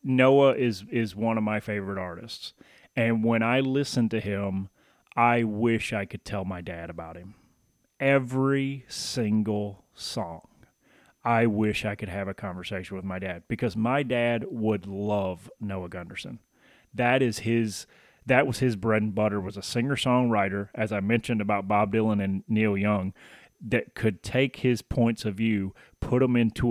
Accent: American